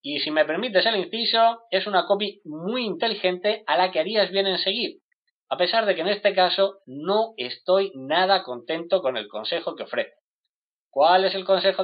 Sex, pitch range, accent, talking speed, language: male, 170-225 Hz, Spanish, 195 wpm, Spanish